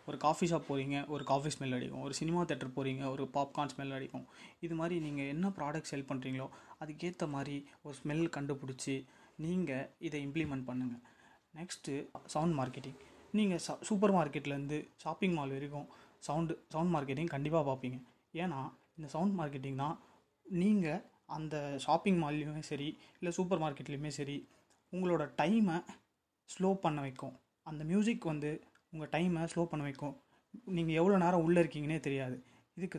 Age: 20-39